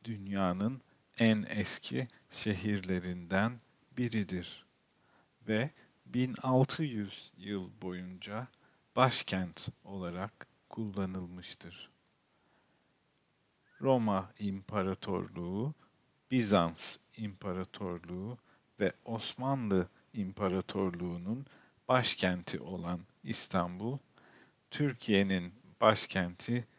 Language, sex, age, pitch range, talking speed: Turkish, male, 50-69, 95-120 Hz, 55 wpm